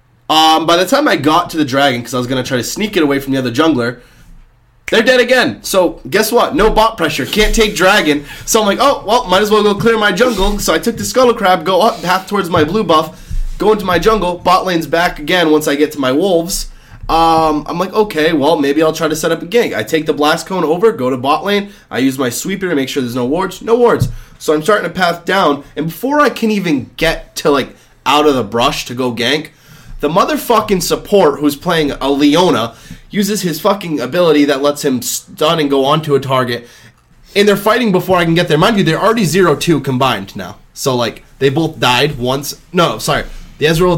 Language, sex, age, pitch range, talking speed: English, male, 20-39, 135-200 Hz, 240 wpm